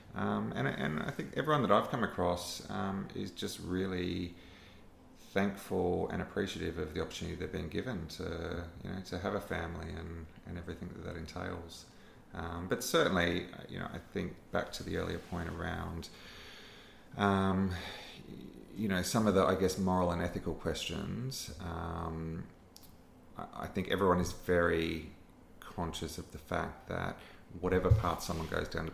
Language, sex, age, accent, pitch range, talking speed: English, male, 30-49, Australian, 80-95 Hz, 165 wpm